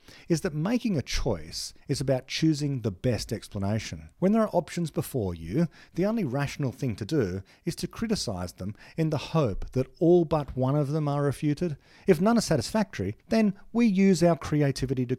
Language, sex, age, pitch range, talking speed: English, male, 40-59, 105-150 Hz, 190 wpm